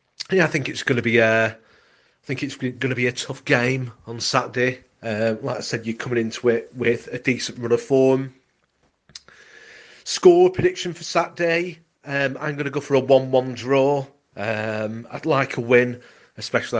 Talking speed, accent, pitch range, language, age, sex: 190 wpm, British, 110-130 Hz, English, 30-49, male